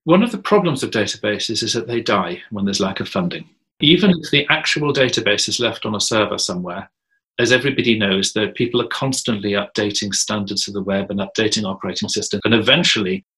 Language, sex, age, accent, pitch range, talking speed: English, male, 40-59, British, 105-145 Hz, 195 wpm